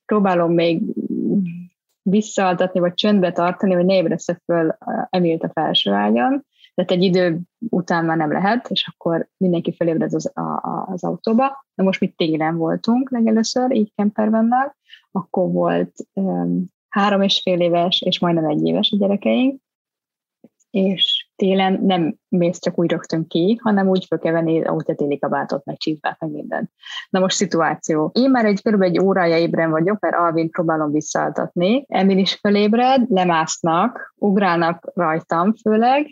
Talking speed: 150 wpm